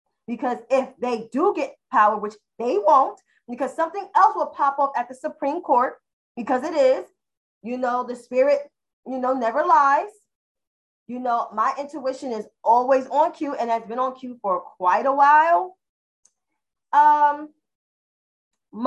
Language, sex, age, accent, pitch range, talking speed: English, female, 20-39, American, 225-280 Hz, 155 wpm